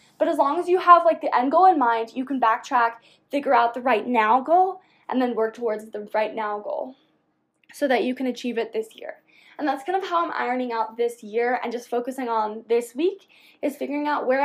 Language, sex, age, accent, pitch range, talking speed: English, female, 10-29, American, 230-285 Hz, 235 wpm